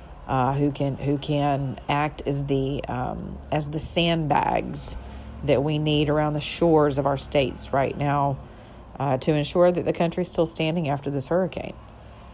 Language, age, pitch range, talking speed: English, 40-59, 140-160 Hz, 165 wpm